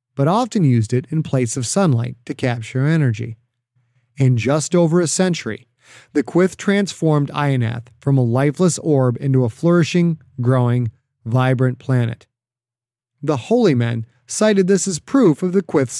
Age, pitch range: 30-49, 120-155 Hz